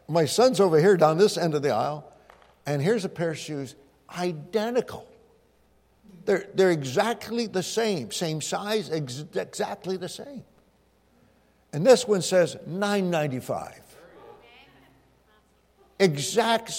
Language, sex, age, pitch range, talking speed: English, male, 60-79, 150-195 Hz, 130 wpm